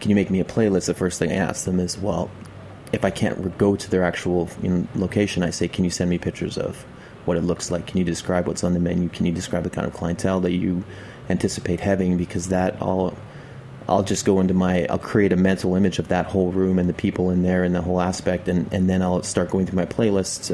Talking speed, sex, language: 255 wpm, male, English